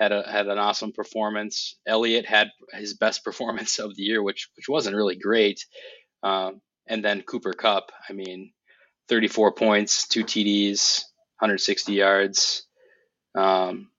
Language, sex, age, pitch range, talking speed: English, male, 20-39, 100-115 Hz, 140 wpm